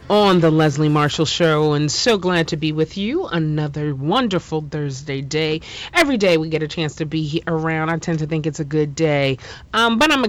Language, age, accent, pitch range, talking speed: English, 30-49, American, 155-200 Hz, 215 wpm